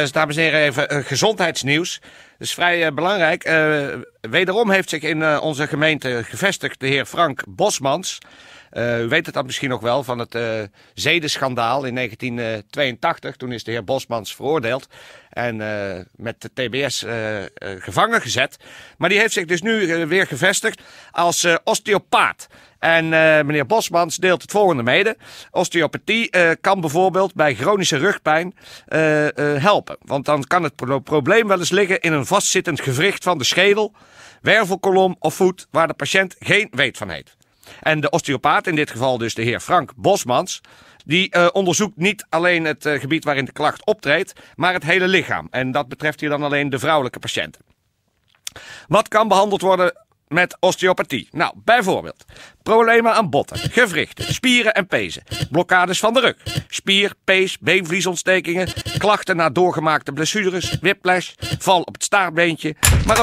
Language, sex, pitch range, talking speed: Dutch, male, 140-185 Hz, 170 wpm